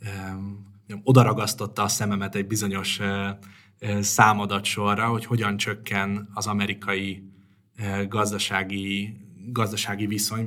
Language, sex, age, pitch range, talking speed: Hungarian, male, 20-39, 100-110 Hz, 115 wpm